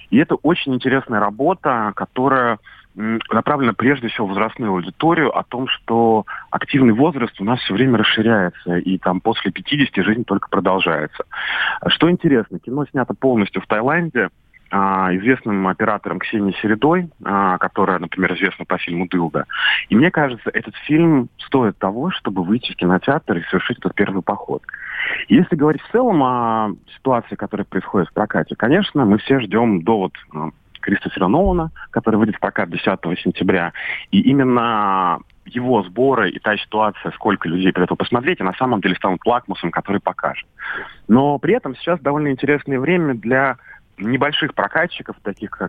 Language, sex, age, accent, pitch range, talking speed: Russian, male, 30-49, native, 95-130 Hz, 155 wpm